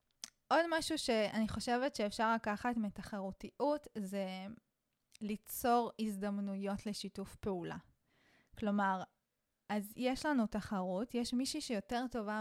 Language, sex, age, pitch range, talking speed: Hebrew, female, 20-39, 210-255 Hz, 100 wpm